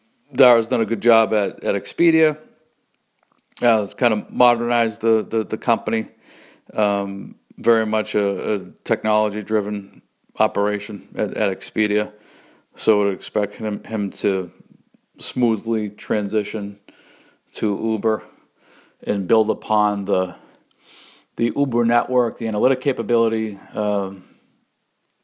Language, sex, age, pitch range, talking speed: English, male, 50-69, 100-120 Hz, 115 wpm